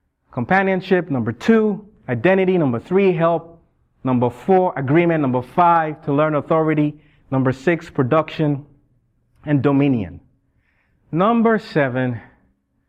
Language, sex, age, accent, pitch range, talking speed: English, male, 30-49, American, 135-170 Hz, 100 wpm